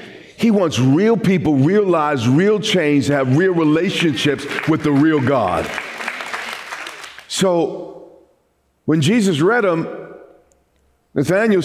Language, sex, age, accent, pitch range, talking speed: English, male, 50-69, American, 140-185 Hz, 115 wpm